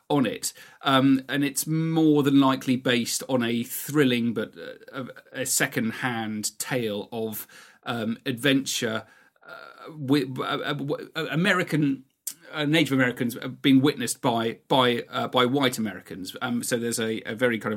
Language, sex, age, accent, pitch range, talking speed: English, male, 40-59, British, 120-145 Hz, 140 wpm